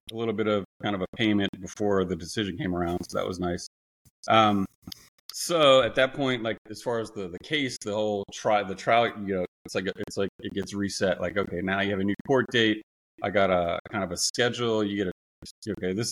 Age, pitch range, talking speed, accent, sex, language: 30-49, 95-110 Hz, 240 wpm, American, male, English